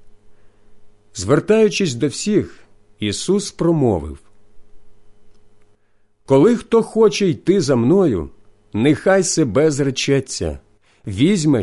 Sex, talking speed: male, 75 wpm